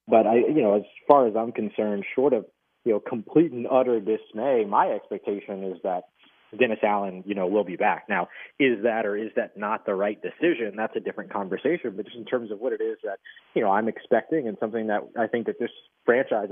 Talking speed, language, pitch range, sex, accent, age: 230 wpm, English, 105-125 Hz, male, American, 20-39